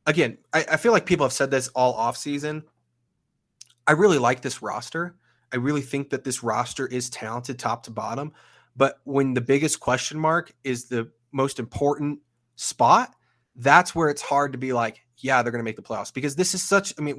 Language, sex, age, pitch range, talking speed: English, male, 20-39, 120-150 Hz, 205 wpm